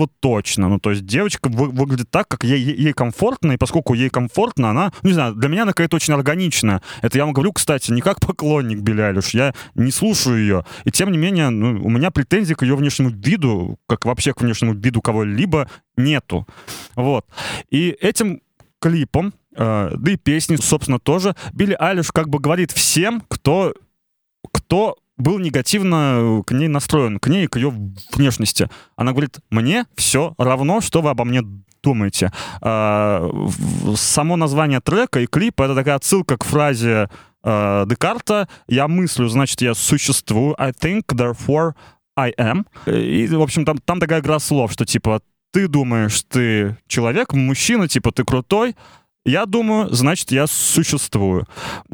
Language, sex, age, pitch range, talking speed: Russian, male, 20-39, 120-160 Hz, 165 wpm